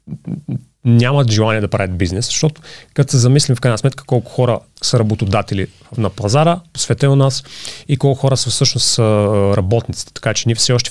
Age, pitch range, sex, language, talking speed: 30-49, 110-145 Hz, male, Bulgarian, 180 wpm